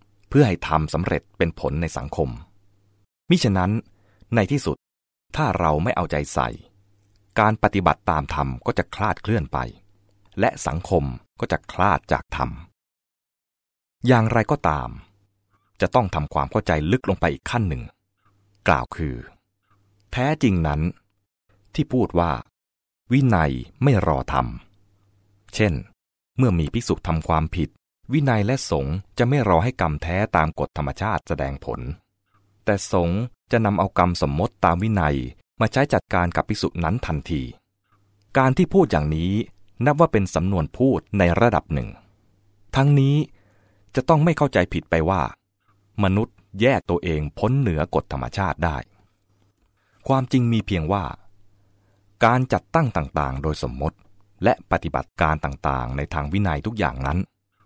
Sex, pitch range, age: male, 80-105 Hz, 20-39